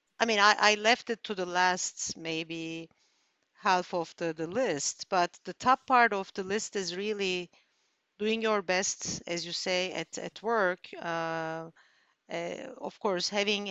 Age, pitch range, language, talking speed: 50-69, 170-225 Hz, English, 165 wpm